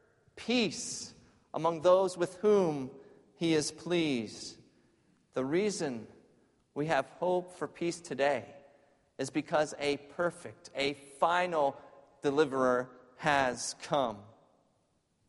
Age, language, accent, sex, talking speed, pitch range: 40-59, English, American, male, 100 wpm, 125-150 Hz